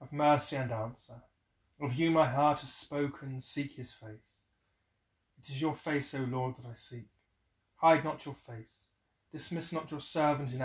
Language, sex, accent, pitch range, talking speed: English, male, British, 105-145 Hz, 175 wpm